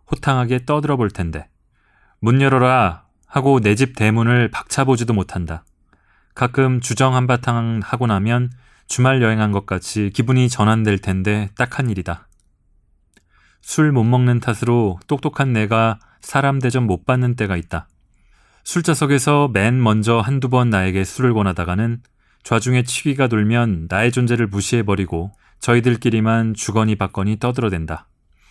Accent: native